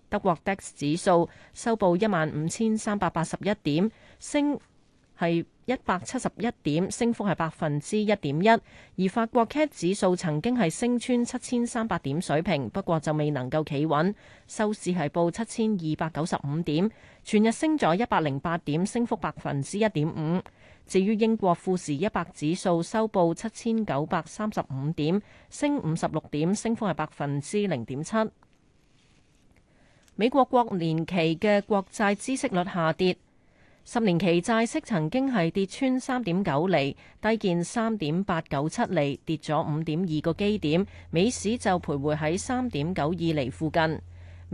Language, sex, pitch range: Chinese, female, 155-220 Hz